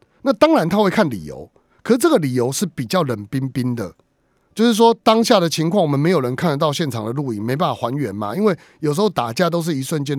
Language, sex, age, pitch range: Chinese, male, 30-49, 115-175 Hz